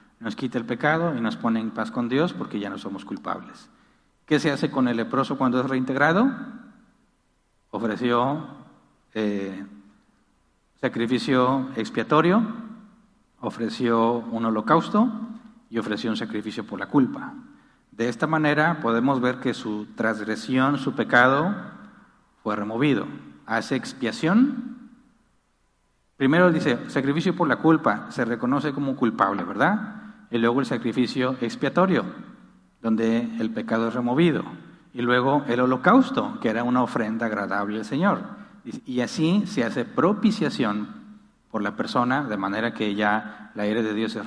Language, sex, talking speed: Spanish, male, 140 wpm